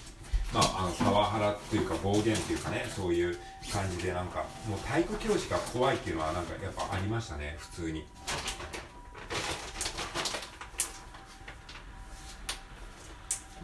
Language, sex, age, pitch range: Japanese, male, 40-59, 85-120 Hz